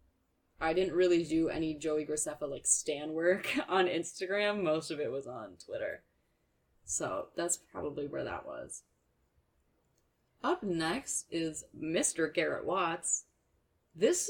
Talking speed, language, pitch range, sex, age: 130 wpm, English, 155-190 Hz, female, 20-39